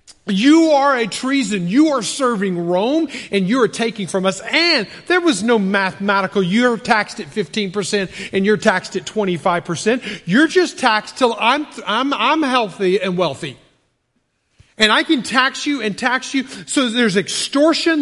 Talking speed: 165 wpm